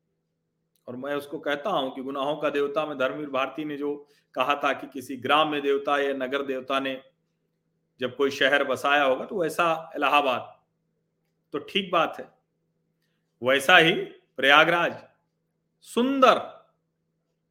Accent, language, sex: native, Hindi, male